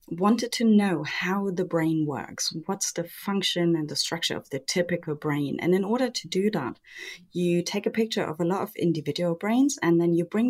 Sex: female